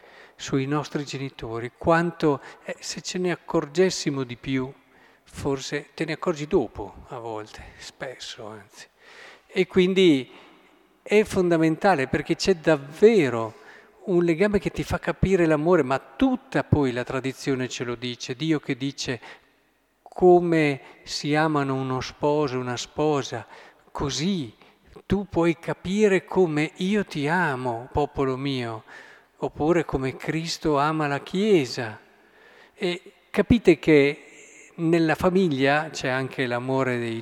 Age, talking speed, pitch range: 50-69, 125 wpm, 130-175 Hz